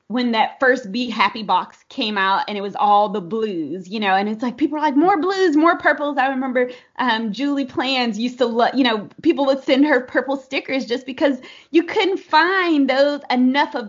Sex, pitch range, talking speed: female, 215-275 Hz, 215 wpm